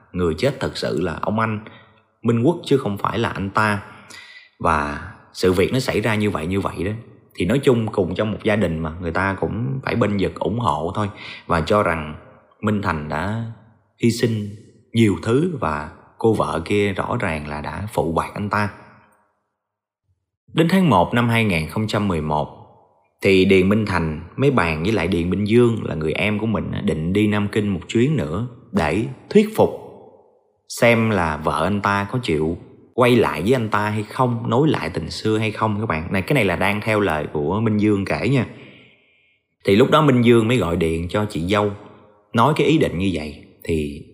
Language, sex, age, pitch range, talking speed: Vietnamese, male, 30-49, 90-115 Hz, 205 wpm